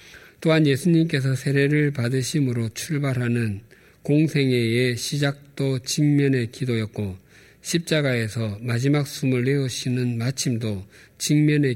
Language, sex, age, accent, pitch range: Korean, male, 50-69, native, 110-140 Hz